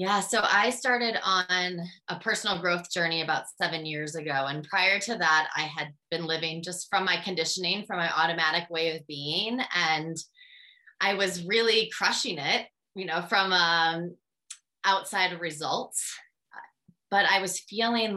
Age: 20-39